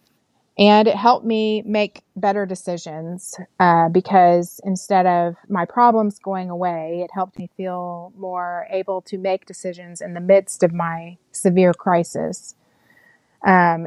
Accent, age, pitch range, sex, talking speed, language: American, 30-49, 170-190 Hz, female, 140 wpm, English